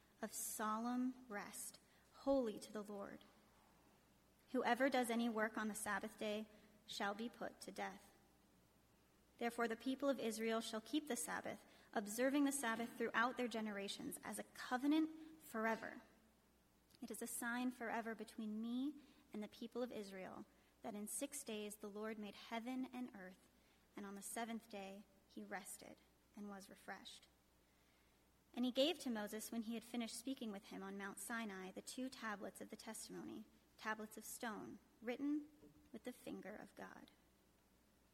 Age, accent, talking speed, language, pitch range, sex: 30-49, American, 160 wpm, English, 210-255 Hz, female